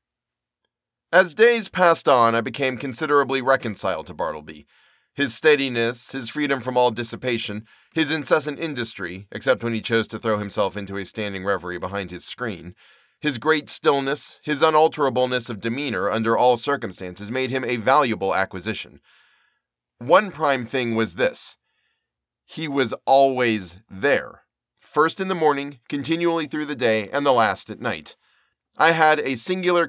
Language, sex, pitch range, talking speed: English, male, 105-145 Hz, 150 wpm